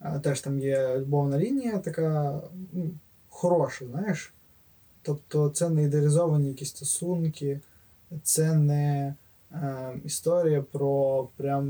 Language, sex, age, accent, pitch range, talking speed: Ukrainian, male, 20-39, native, 135-155 Hz, 110 wpm